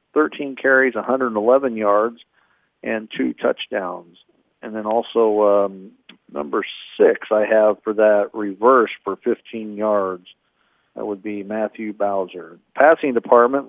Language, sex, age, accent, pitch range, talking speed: English, male, 50-69, American, 100-125 Hz, 125 wpm